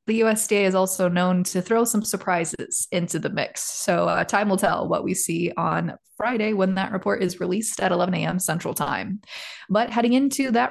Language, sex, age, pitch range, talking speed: English, female, 20-39, 180-225 Hz, 200 wpm